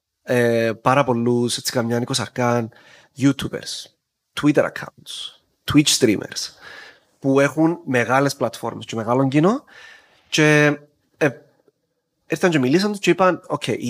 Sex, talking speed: male, 110 wpm